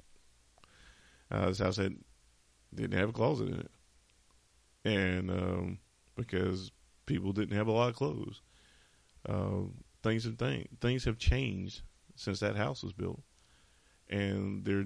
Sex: male